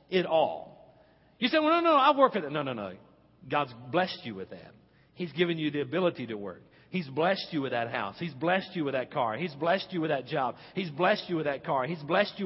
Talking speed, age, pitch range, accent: 255 wpm, 50-69, 125-180 Hz, American